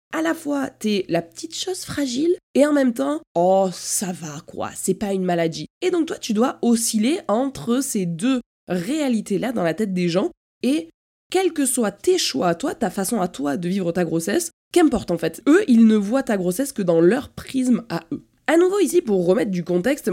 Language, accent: French, French